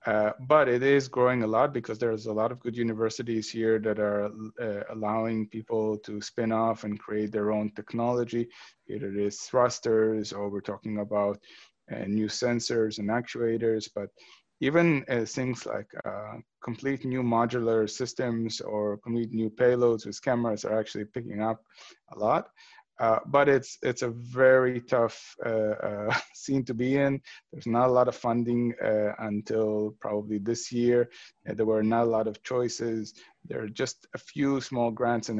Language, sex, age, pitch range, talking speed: English, male, 30-49, 110-120 Hz, 175 wpm